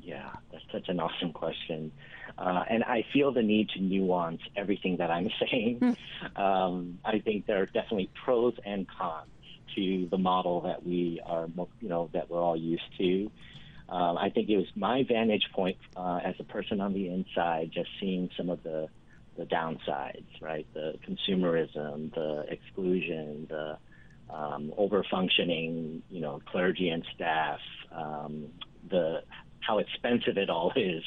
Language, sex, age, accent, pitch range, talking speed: English, male, 50-69, American, 85-95 Hz, 160 wpm